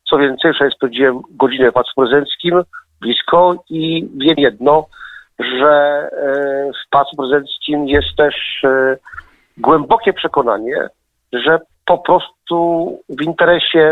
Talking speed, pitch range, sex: 115 wpm, 135-165 Hz, male